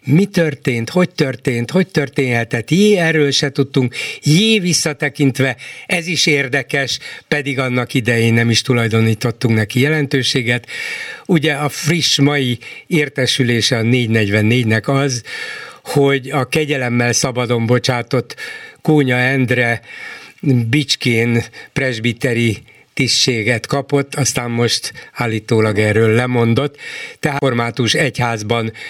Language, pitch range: Hungarian, 120-150 Hz